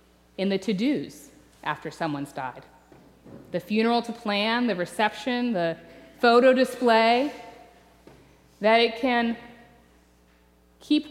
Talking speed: 105 wpm